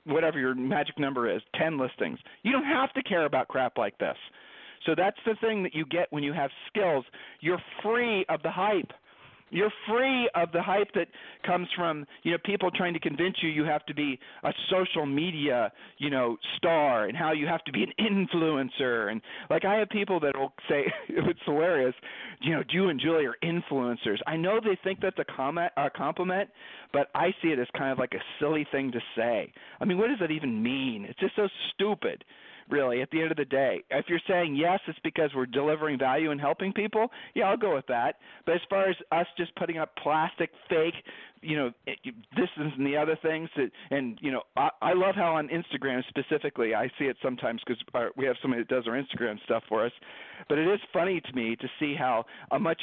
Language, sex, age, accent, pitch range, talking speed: English, male, 40-59, American, 135-180 Hz, 215 wpm